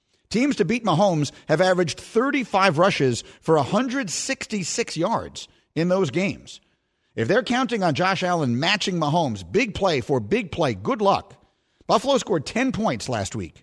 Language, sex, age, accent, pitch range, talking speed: English, male, 50-69, American, 135-200 Hz, 155 wpm